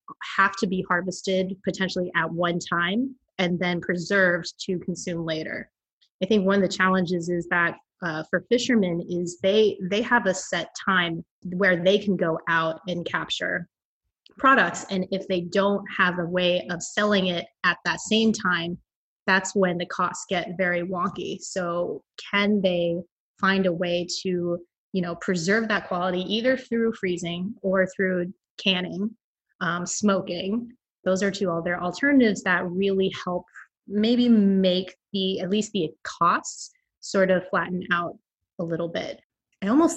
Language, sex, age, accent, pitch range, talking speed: English, female, 20-39, American, 175-200 Hz, 160 wpm